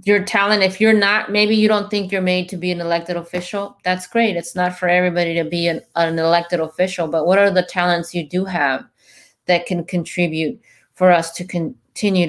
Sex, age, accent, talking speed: female, 30-49, American, 210 wpm